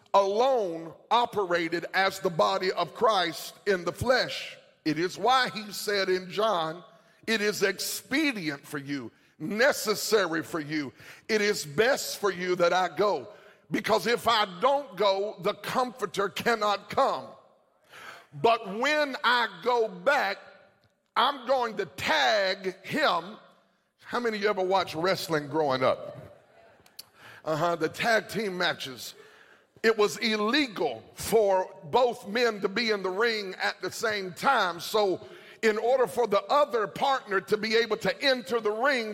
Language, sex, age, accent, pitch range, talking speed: English, male, 50-69, American, 190-235 Hz, 145 wpm